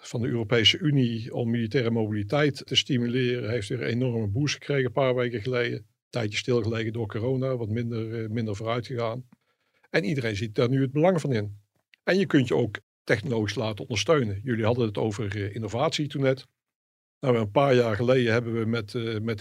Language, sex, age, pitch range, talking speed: Dutch, male, 50-69, 110-130 Hz, 185 wpm